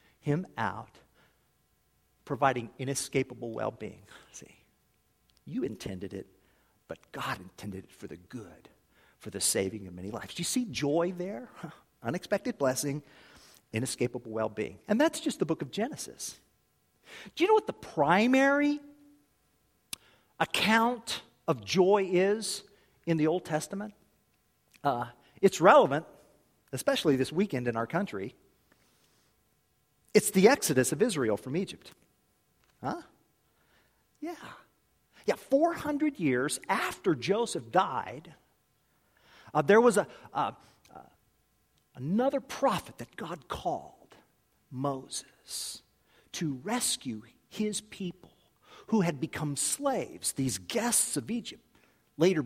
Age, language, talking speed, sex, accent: 50-69, English, 115 wpm, male, American